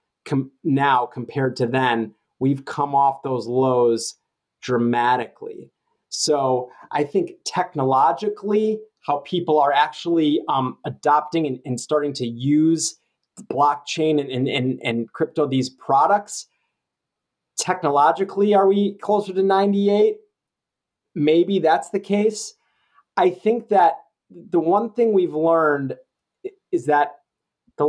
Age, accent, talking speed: 30-49, American, 115 wpm